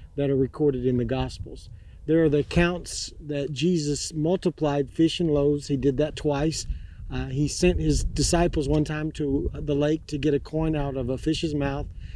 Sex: male